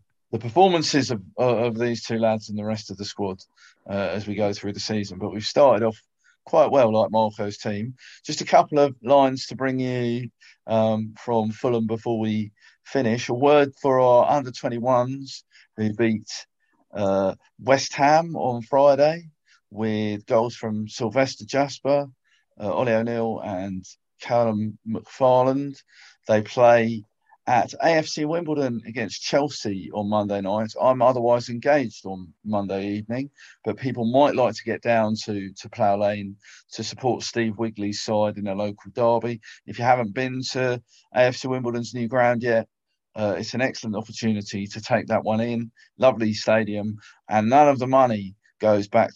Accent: British